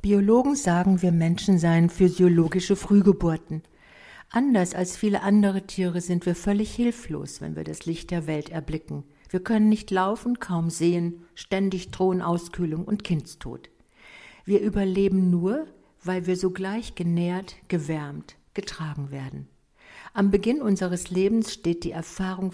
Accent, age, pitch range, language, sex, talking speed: German, 60-79, 170-200 Hz, German, female, 135 wpm